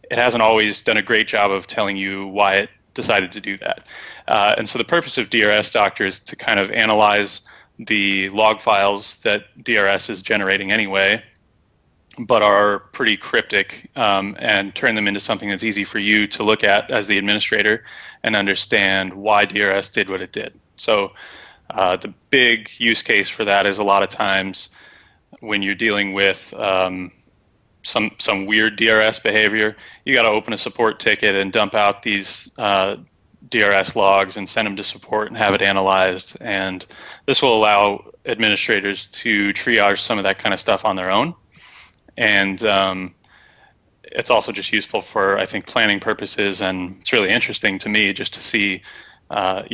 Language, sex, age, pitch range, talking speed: English, male, 20-39, 95-105 Hz, 180 wpm